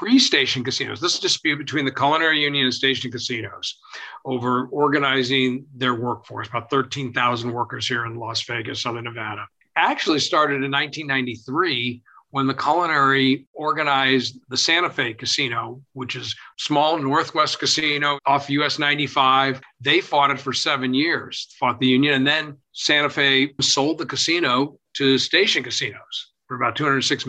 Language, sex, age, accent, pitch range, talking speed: English, male, 50-69, American, 125-145 Hz, 145 wpm